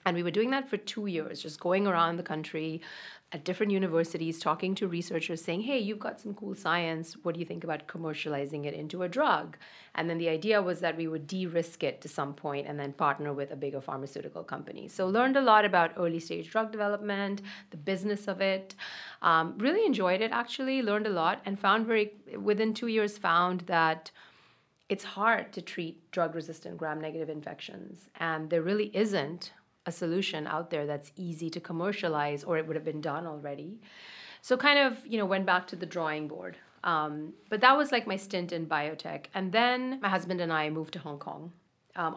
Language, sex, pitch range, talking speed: English, female, 155-205 Hz, 205 wpm